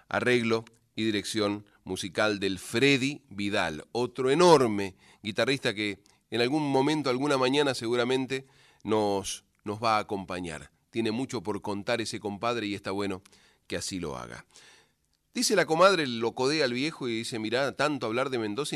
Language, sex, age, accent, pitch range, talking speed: Spanish, male, 30-49, Argentinian, 105-155 Hz, 155 wpm